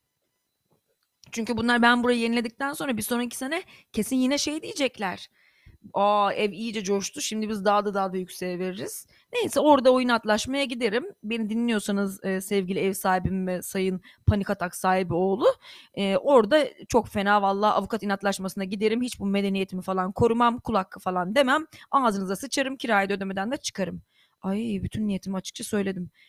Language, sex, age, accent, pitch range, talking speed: Turkish, female, 30-49, native, 195-250 Hz, 155 wpm